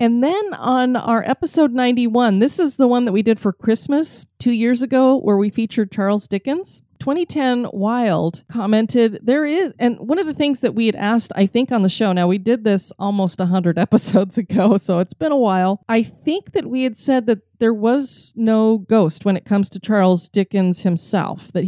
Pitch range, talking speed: 195-245 Hz, 205 wpm